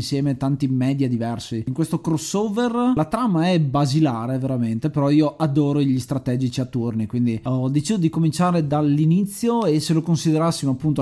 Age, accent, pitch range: 20-39, native, 130-165 Hz